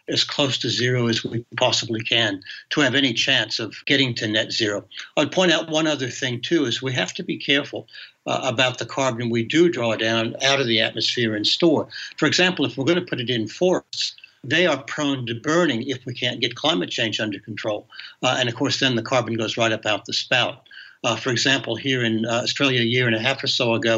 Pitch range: 115-140 Hz